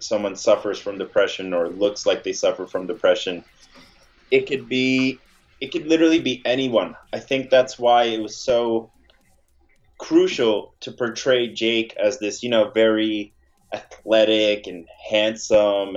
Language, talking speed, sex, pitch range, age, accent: English, 145 wpm, male, 105-130 Hz, 20-39, American